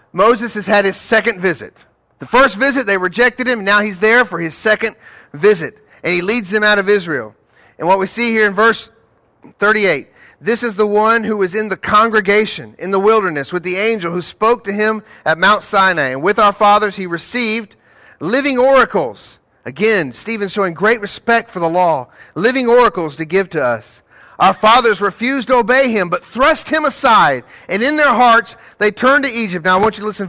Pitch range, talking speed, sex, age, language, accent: 195-240 Hz, 200 wpm, male, 40-59, English, American